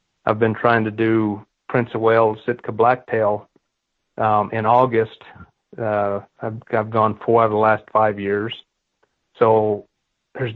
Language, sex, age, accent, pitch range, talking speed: English, male, 40-59, American, 105-120 Hz, 150 wpm